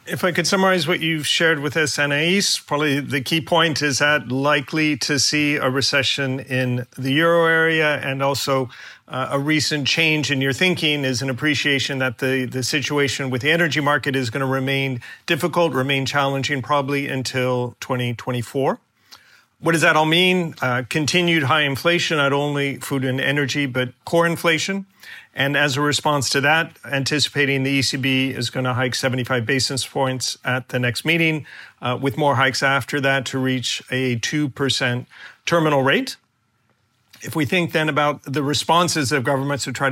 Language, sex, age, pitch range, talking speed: English, male, 40-59, 130-155 Hz, 175 wpm